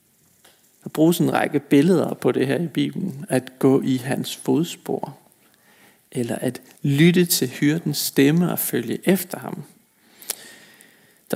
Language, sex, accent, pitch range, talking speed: Danish, male, native, 140-185 Hz, 135 wpm